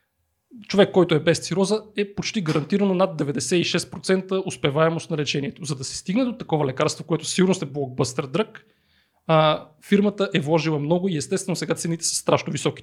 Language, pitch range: Bulgarian, 150-185 Hz